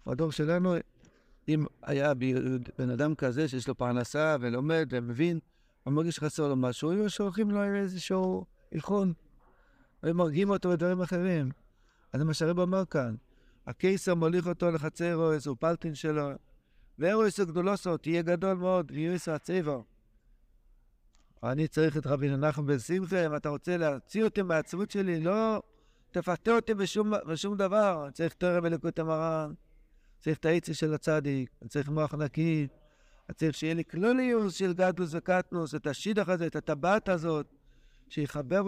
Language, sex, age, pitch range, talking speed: Hebrew, male, 60-79, 145-185 Hz, 155 wpm